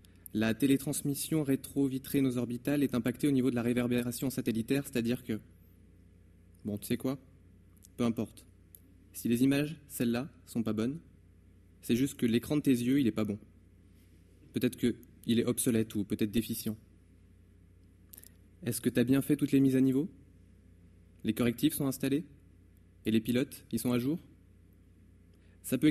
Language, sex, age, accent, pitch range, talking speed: French, male, 20-39, French, 90-135 Hz, 160 wpm